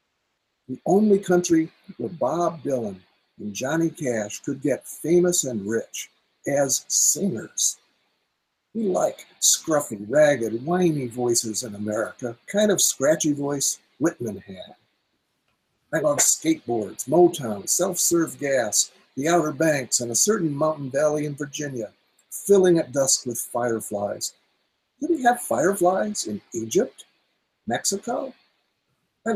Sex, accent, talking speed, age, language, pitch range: male, American, 120 wpm, 60-79, English, 125-180 Hz